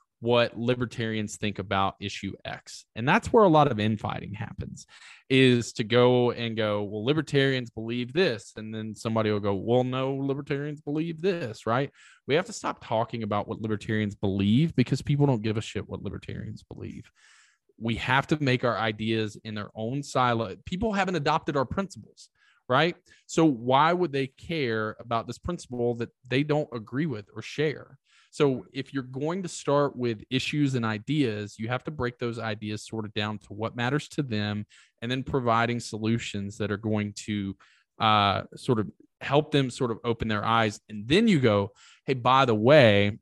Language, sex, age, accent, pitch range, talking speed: English, male, 20-39, American, 110-140 Hz, 185 wpm